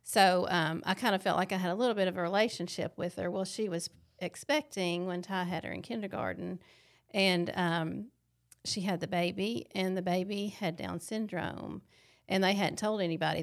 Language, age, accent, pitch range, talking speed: English, 40-59, American, 170-205 Hz, 195 wpm